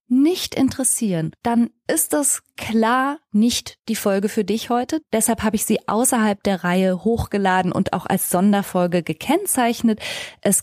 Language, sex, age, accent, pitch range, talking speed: German, female, 20-39, German, 190-240 Hz, 145 wpm